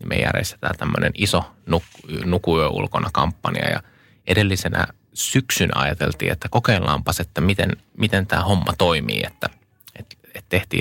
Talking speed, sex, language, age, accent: 140 wpm, male, Finnish, 20-39, native